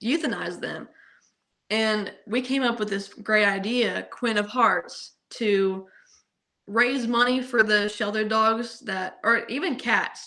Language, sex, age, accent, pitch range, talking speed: English, female, 10-29, American, 190-220 Hz, 140 wpm